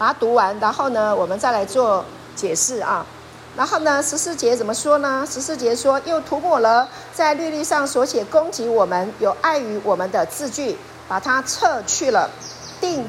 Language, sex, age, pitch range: Chinese, female, 50-69, 230-325 Hz